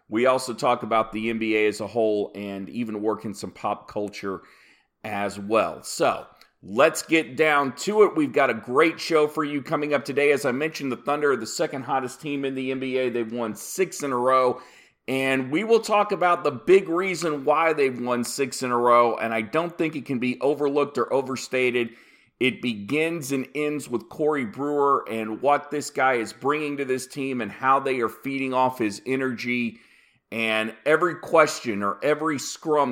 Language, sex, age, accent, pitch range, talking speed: English, male, 40-59, American, 120-150 Hz, 195 wpm